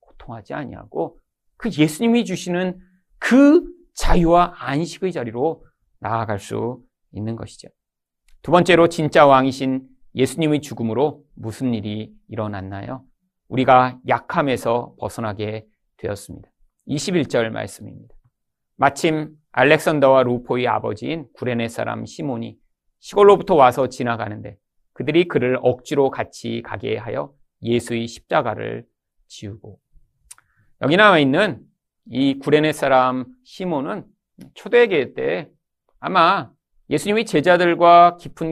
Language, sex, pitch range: Korean, male, 115-170 Hz